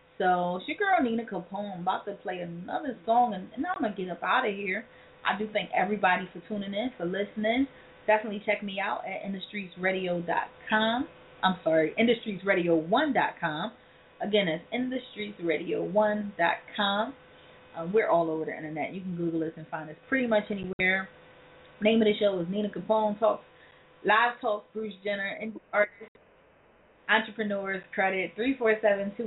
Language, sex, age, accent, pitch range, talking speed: English, female, 20-39, American, 170-215 Hz, 160 wpm